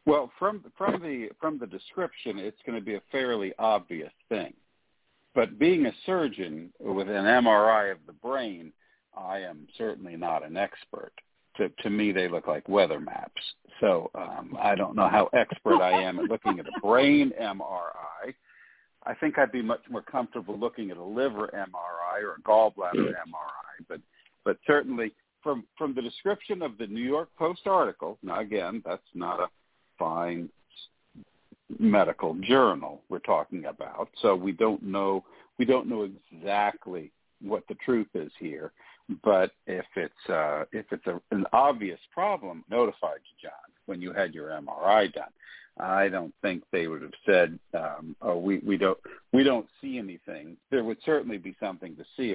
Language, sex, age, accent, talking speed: English, male, 60-79, American, 170 wpm